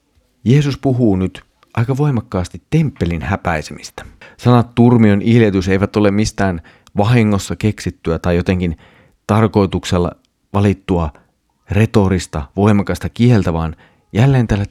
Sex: male